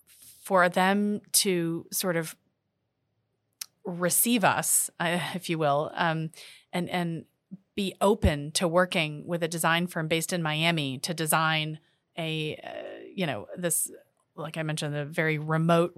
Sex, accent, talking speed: female, American, 145 wpm